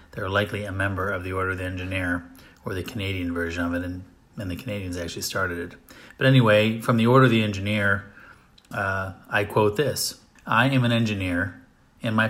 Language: English